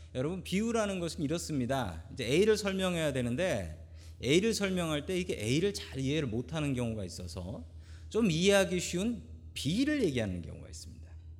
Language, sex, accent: Korean, male, native